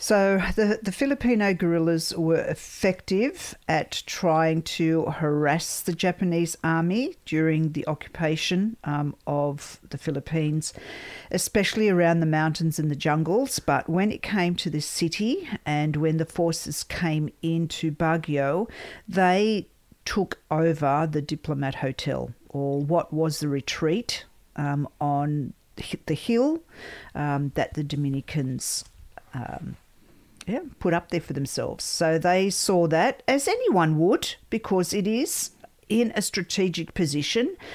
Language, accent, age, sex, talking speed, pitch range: English, Australian, 50-69, female, 130 wpm, 150-185 Hz